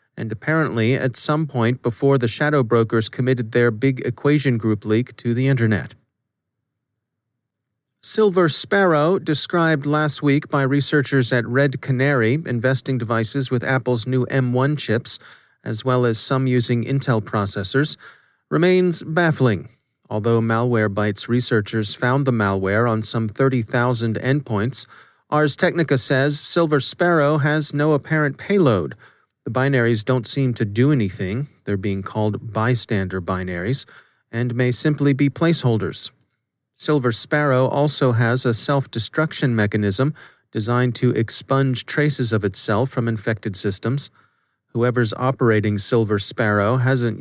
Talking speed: 130 wpm